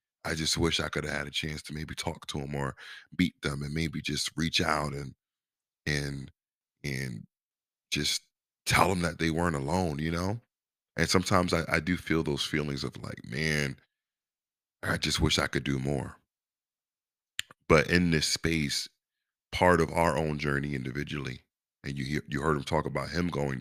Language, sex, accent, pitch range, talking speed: English, male, American, 75-90 Hz, 185 wpm